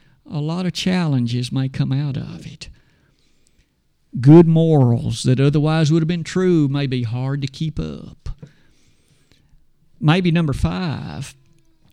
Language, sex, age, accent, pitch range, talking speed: English, male, 50-69, American, 145-195 Hz, 130 wpm